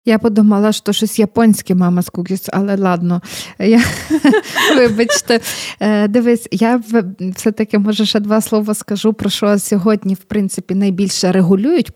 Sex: female